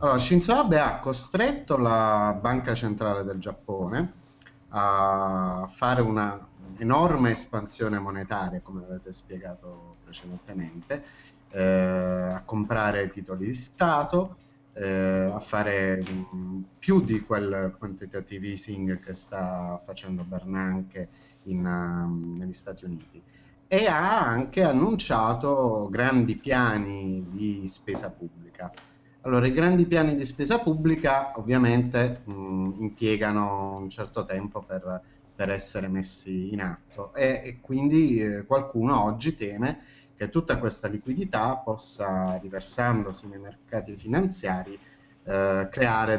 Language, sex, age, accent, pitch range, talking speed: Italian, male, 30-49, native, 95-130 Hz, 115 wpm